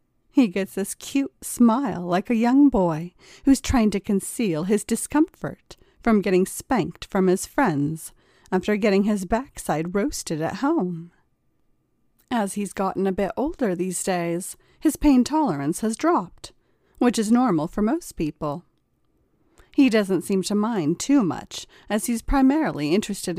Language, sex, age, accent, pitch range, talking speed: English, female, 40-59, American, 180-245 Hz, 150 wpm